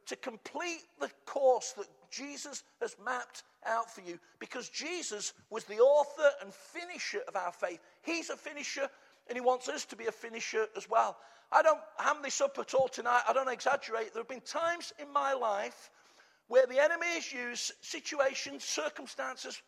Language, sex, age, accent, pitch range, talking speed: English, male, 50-69, British, 245-325 Hz, 175 wpm